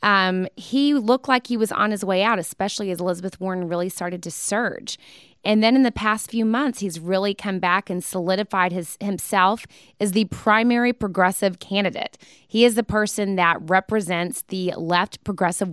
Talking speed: 175 wpm